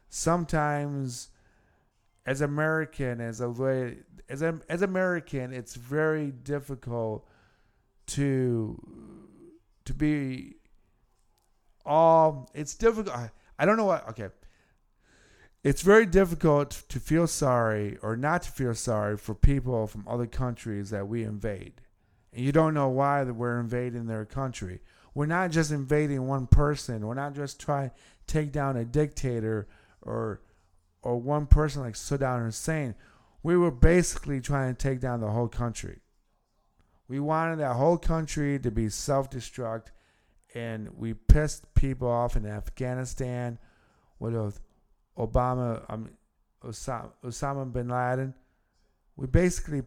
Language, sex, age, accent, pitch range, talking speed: English, male, 50-69, American, 110-145 Hz, 135 wpm